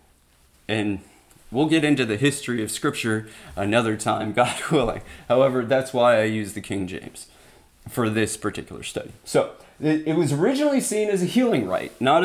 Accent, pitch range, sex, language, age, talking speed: American, 105-145 Hz, male, English, 30-49, 165 wpm